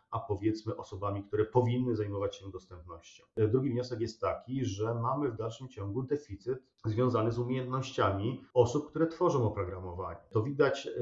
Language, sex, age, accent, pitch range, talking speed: Polish, male, 40-59, native, 100-125 Hz, 145 wpm